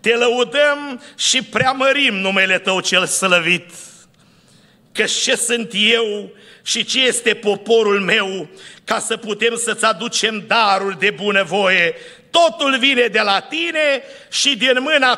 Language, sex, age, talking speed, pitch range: Romanian, male, 50-69, 130 wpm, 195-240 Hz